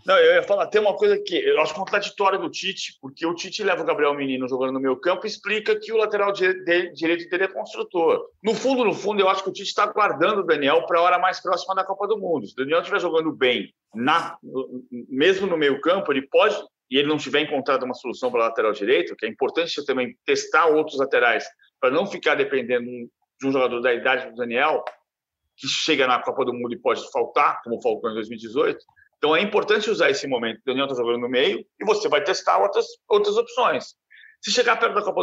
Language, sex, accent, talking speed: Portuguese, male, Brazilian, 230 wpm